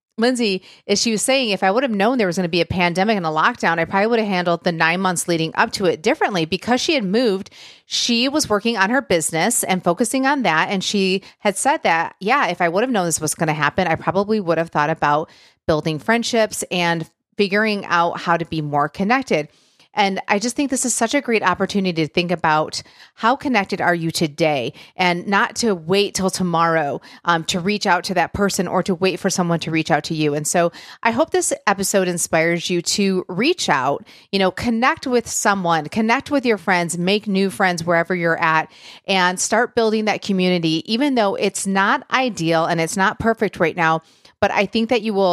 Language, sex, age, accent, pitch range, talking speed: English, female, 30-49, American, 170-220 Hz, 220 wpm